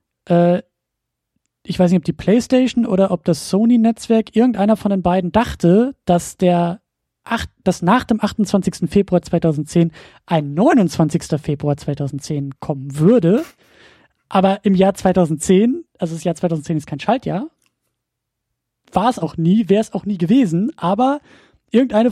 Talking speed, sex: 140 wpm, male